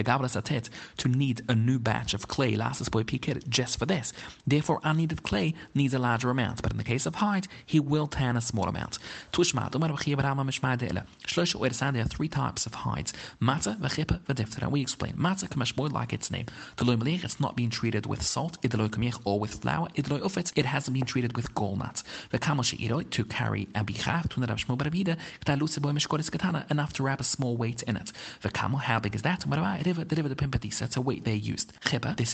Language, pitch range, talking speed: English, 115-150 Hz, 180 wpm